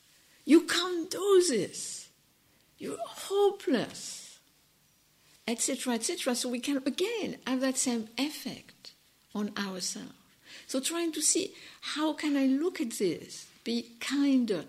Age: 60-79